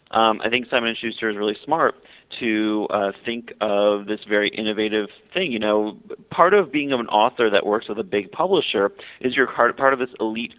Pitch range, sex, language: 100-115 Hz, male, English